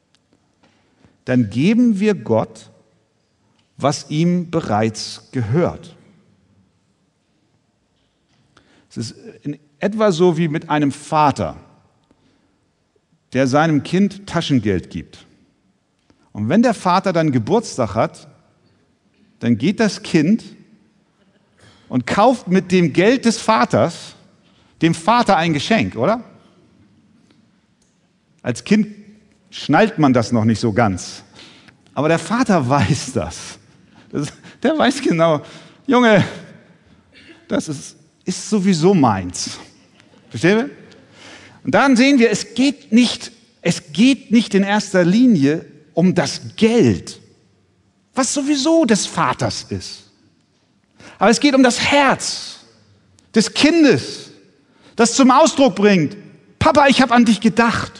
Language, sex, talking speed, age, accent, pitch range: German, male, 110 wpm, 50-69, German, 130-220 Hz